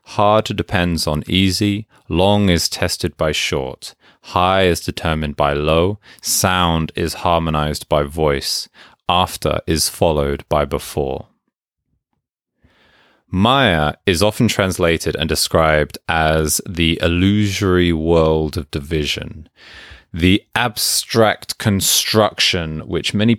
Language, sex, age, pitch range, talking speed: English, male, 30-49, 80-100 Hz, 105 wpm